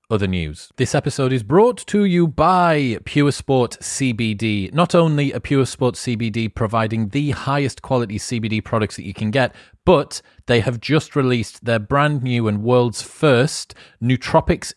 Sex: male